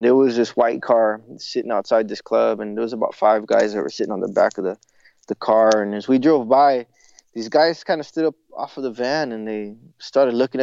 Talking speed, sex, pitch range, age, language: 250 wpm, male, 115-145 Hz, 20-39, English